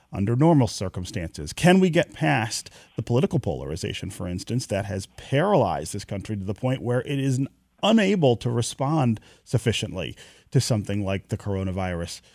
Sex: male